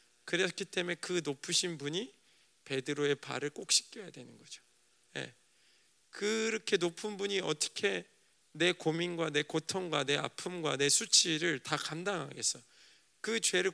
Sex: male